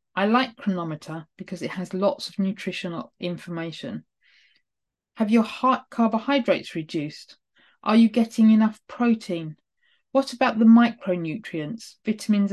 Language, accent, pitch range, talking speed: English, British, 180-230 Hz, 120 wpm